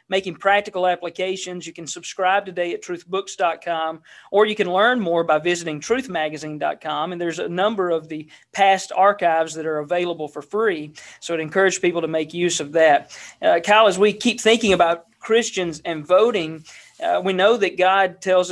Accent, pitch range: American, 165-195 Hz